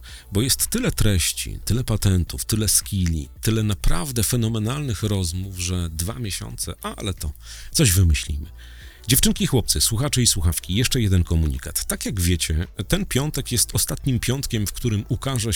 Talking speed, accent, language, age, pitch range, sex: 150 wpm, native, Polish, 40-59, 85-115 Hz, male